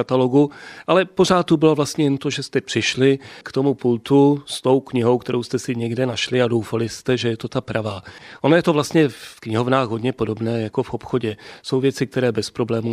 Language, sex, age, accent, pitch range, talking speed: Czech, male, 30-49, native, 110-125 Hz, 215 wpm